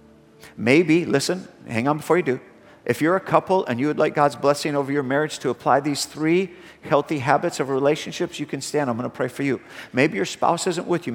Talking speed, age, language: 230 wpm, 50-69, English